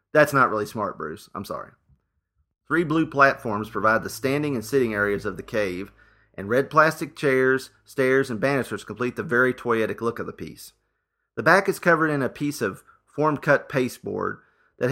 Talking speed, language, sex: 180 wpm, English, male